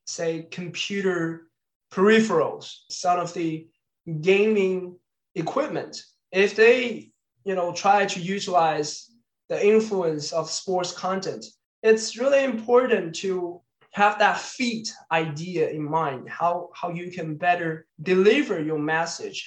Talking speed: 115 wpm